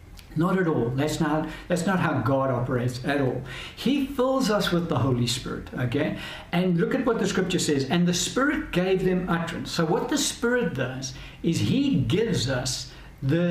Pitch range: 135-180 Hz